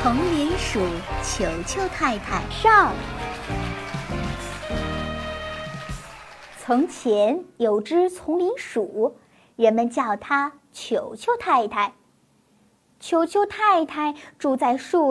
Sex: male